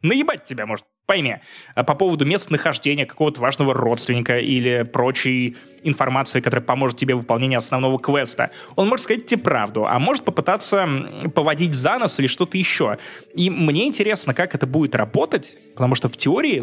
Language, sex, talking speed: Russian, male, 160 wpm